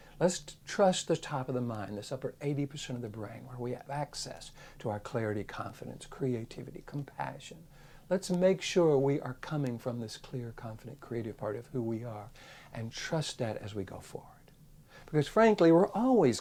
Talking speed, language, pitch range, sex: 185 wpm, English, 110-150 Hz, male